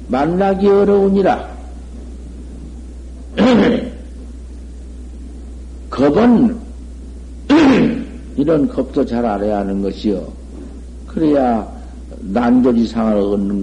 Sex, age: male, 60-79